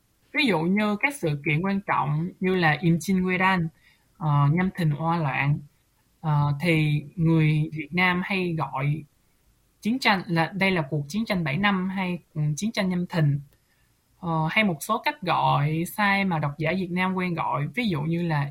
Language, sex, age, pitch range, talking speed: Vietnamese, male, 20-39, 155-195 Hz, 190 wpm